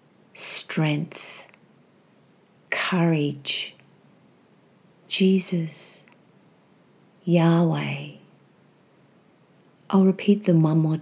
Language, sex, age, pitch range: English, female, 40-59, 155-190 Hz